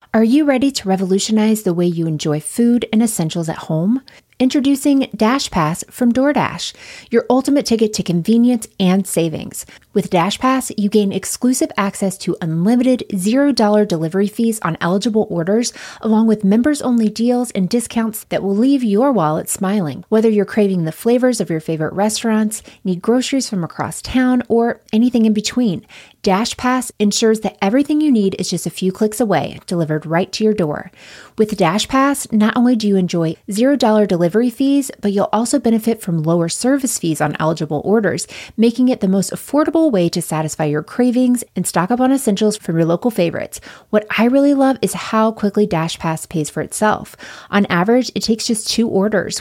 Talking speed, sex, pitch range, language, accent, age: 175 wpm, female, 180-245 Hz, English, American, 20-39